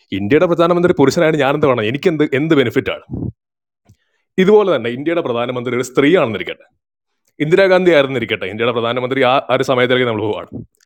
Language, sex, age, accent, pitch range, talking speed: Malayalam, male, 30-49, native, 115-150 Hz, 160 wpm